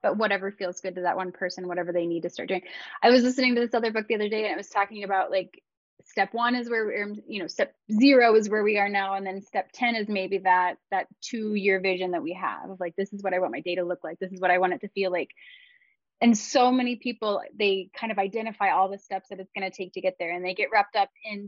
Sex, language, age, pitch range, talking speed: female, English, 10-29, 185-235 Hz, 290 wpm